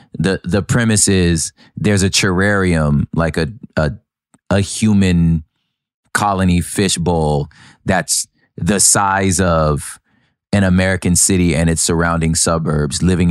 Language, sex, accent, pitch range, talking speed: English, male, American, 80-100 Hz, 115 wpm